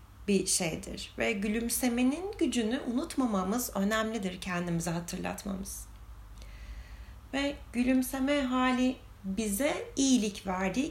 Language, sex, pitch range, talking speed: Turkish, female, 180-245 Hz, 85 wpm